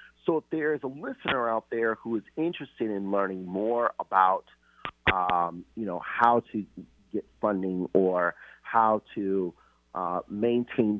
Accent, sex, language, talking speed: American, male, English, 145 wpm